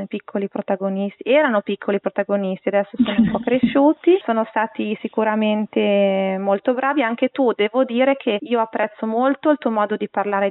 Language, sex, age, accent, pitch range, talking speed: Italian, female, 20-39, native, 205-235 Hz, 160 wpm